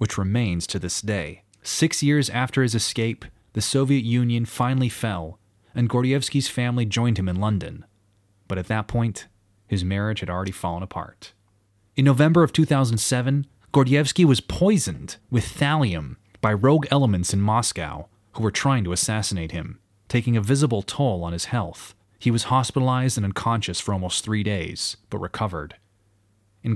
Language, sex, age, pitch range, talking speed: English, male, 30-49, 100-130 Hz, 160 wpm